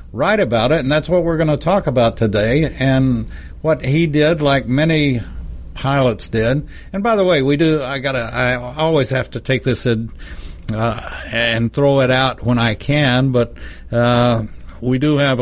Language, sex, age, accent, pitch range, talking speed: English, male, 60-79, American, 110-135 Hz, 185 wpm